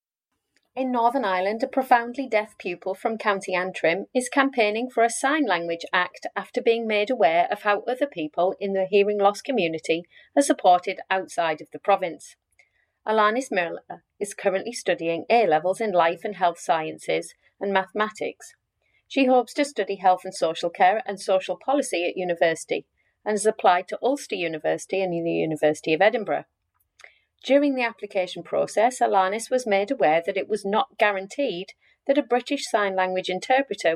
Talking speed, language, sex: 165 wpm, English, female